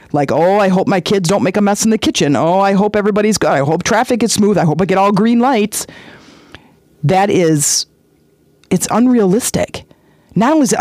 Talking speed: 210 wpm